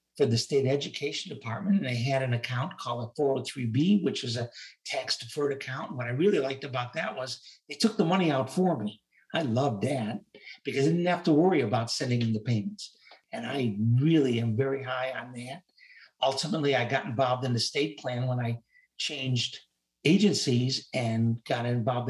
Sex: male